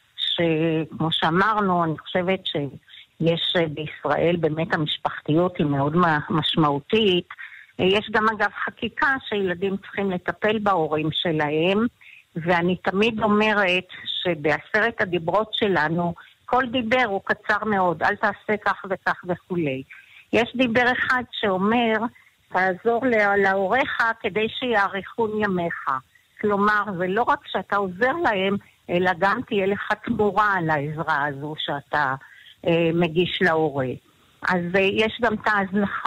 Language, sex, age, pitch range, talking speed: Hebrew, female, 50-69, 170-215 Hz, 120 wpm